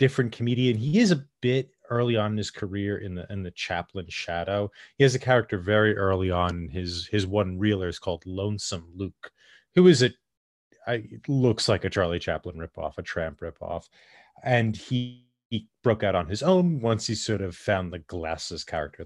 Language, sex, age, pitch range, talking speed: English, male, 30-49, 95-130 Hz, 200 wpm